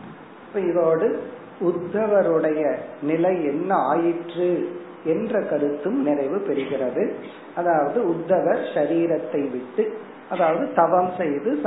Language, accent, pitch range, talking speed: Tamil, native, 145-170 Hz, 70 wpm